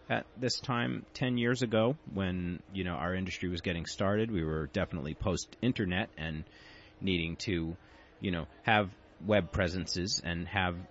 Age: 30-49